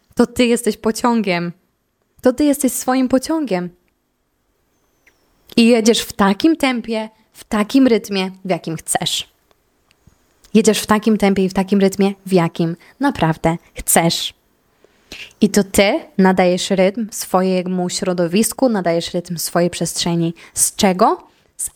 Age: 20-39